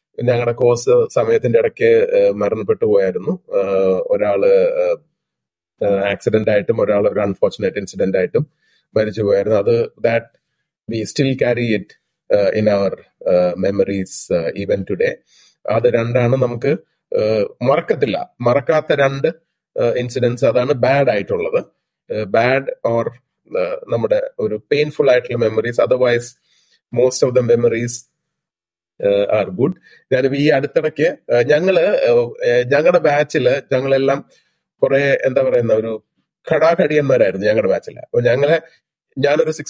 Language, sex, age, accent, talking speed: Malayalam, male, 30-49, native, 95 wpm